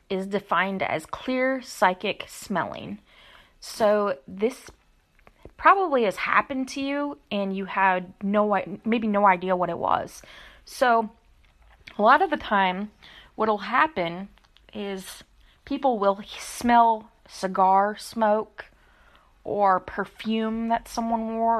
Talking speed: 120 wpm